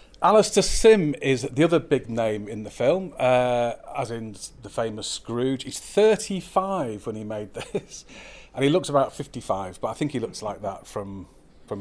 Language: English